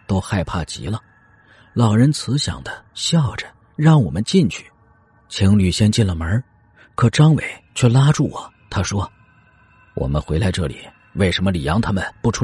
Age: 40-59